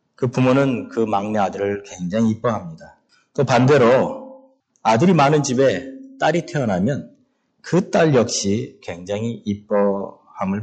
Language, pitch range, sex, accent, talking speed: English, 105-165 Hz, male, Korean, 100 wpm